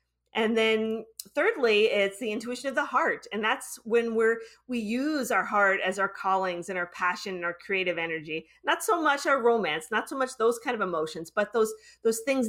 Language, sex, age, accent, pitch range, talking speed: English, female, 40-59, American, 175-230 Hz, 205 wpm